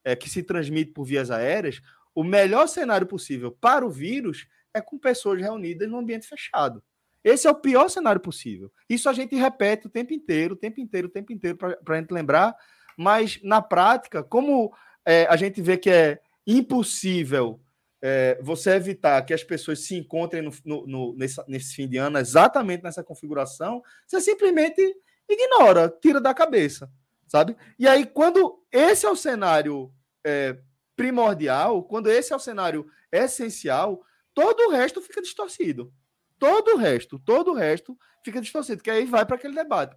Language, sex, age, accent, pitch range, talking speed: Portuguese, male, 20-39, Brazilian, 155-255 Hz, 170 wpm